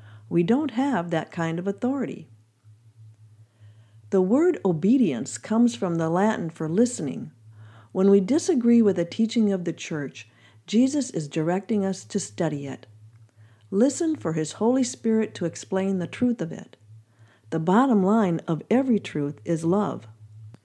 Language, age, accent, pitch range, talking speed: English, 60-79, American, 135-220 Hz, 150 wpm